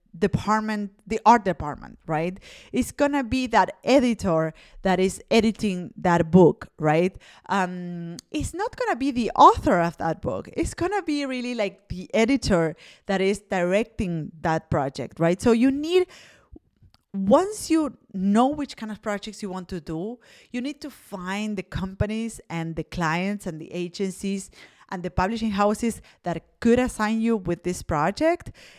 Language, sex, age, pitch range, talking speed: English, female, 30-49, 175-245 Hz, 160 wpm